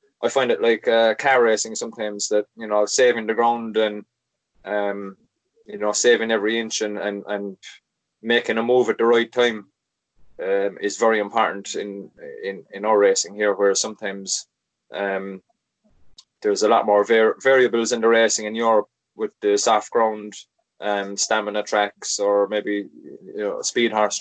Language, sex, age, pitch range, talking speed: English, male, 20-39, 105-120 Hz, 170 wpm